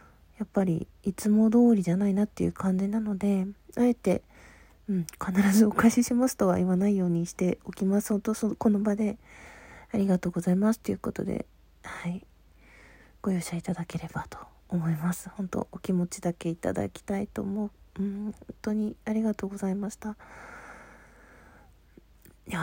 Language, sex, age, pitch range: Japanese, female, 40-59, 170-220 Hz